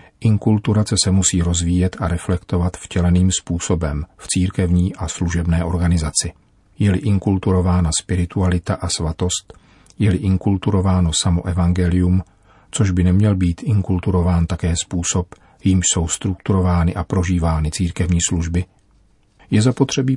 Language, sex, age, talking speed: Czech, male, 40-59, 115 wpm